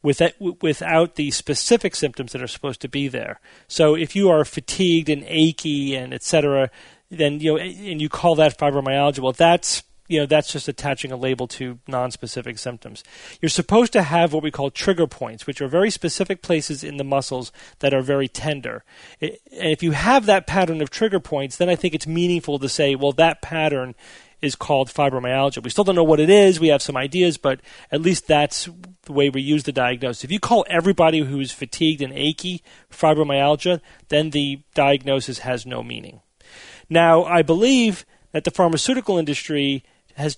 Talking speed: 190 wpm